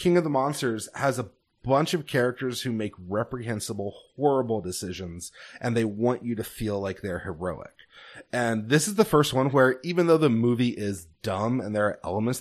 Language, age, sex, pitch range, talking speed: English, 30-49, male, 105-140 Hz, 195 wpm